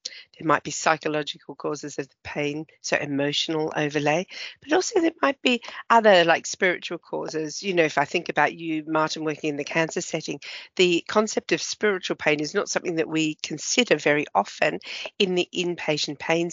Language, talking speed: English, 180 wpm